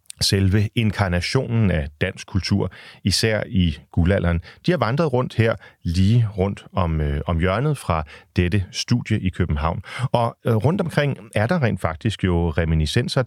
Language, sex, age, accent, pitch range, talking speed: Danish, male, 40-59, native, 90-115 Hz, 155 wpm